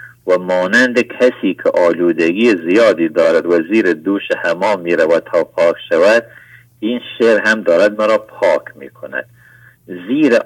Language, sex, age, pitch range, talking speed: English, male, 50-69, 90-120 Hz, 150 wpm